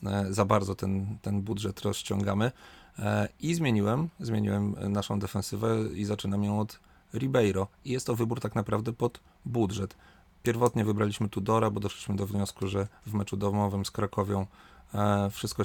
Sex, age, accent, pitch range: male, 30-49, native, 100-115 Hz